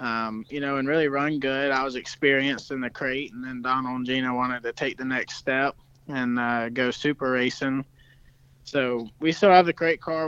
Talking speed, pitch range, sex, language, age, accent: 210 wpm, 125-145 Hz, male, English, 20-39, American